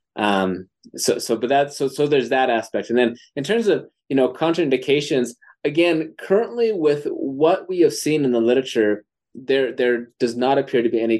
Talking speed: 195 wpm